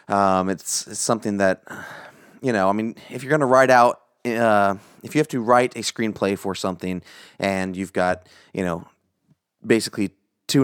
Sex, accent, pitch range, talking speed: male, American, 95-115 Hz, 180 wpm